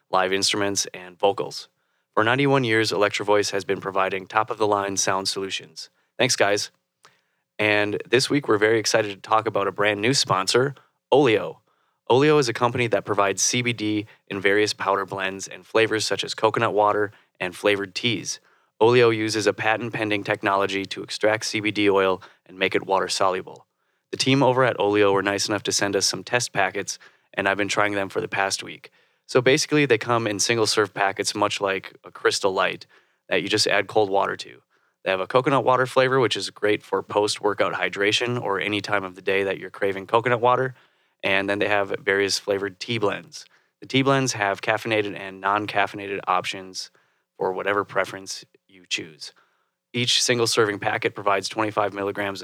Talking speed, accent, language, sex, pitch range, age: 175 wpm, American, English, male, 100-110 Hz, 20-39